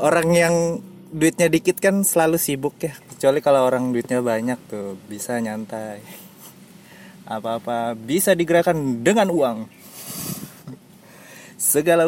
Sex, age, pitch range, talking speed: male, 20-39, 125-185 Hz, 110 wpm